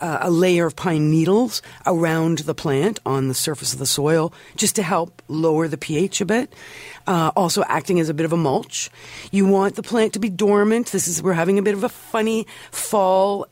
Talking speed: 215 wpm